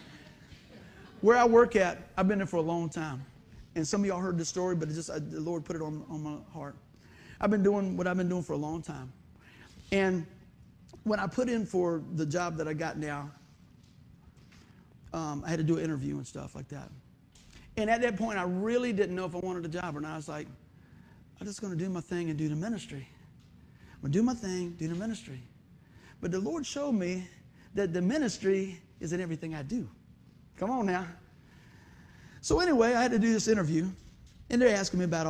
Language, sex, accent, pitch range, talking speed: English, male, American, 150-220 Hz, 225 wpm